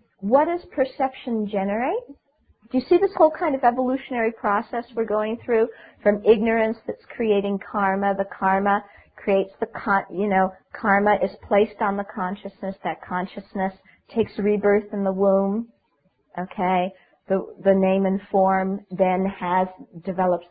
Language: English